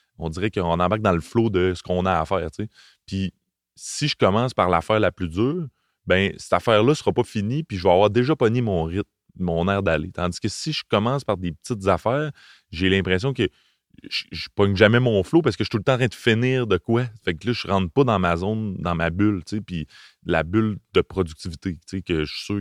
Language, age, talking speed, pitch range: French, 30-49, 260 wpm, 90-115 Hz